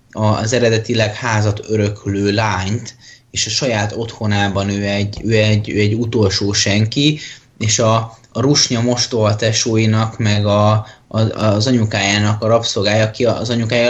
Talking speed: 145 wpm